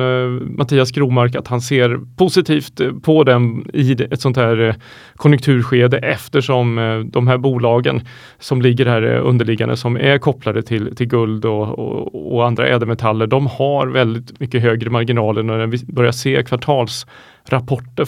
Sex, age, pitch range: male, 30-49, 115-135 Hz